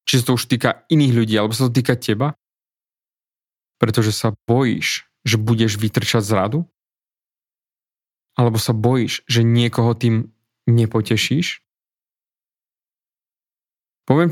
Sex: male